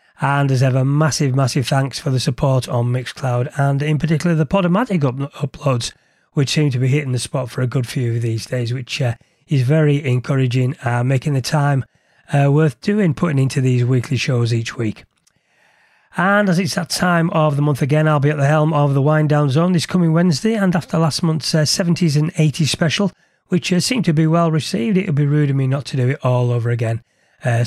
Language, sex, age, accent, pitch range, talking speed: English, male, 30-49, British, 130-165 Hz, 225 wpm